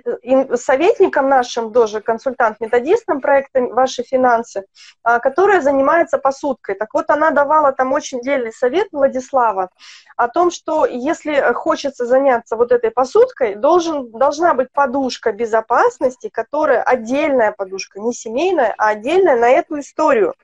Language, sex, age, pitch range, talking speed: Russian, female, 20-39, 235-310 Hz, 125 wpm